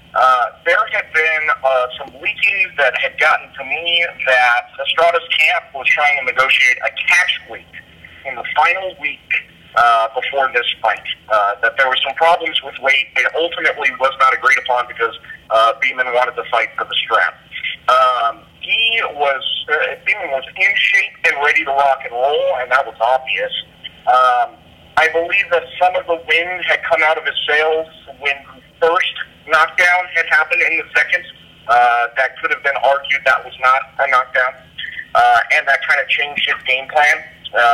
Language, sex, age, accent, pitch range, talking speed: English, male, 40-59, American, 125-170 Hz, 185 wpm